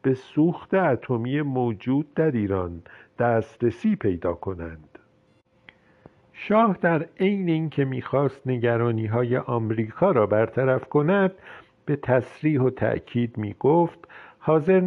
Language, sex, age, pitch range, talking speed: Persian, male, 50-69, 105-145 Hz, 95 wpm